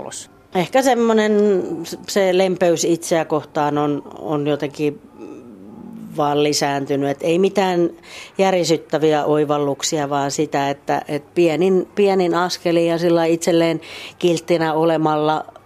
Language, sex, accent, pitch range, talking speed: Finnish, female, native, 145-165 Hz, 105 wpm